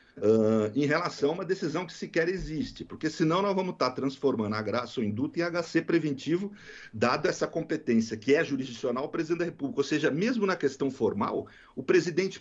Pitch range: 115-165 Hz